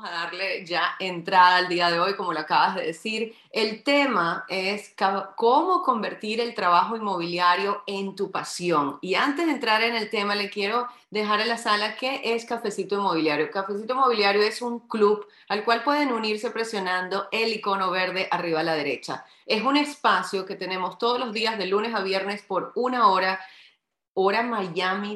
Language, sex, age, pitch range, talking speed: Spanish, female, 30-49, 180-225 Hz, 180 wpm